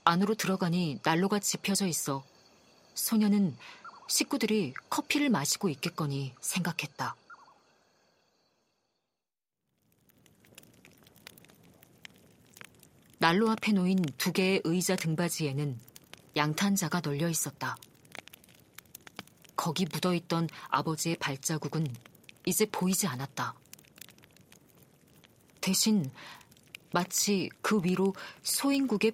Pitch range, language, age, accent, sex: 155-200 Hz, Korean, 40-59, native, female